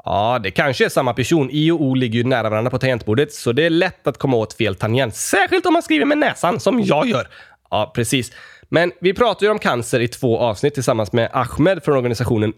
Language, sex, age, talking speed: Swedish, male, 20-39, 235 wpm